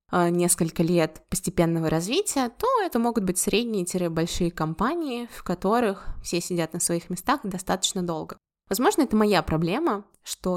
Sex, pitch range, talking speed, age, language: female, 175-220 Hz, 135 wpm, 20-39, Russian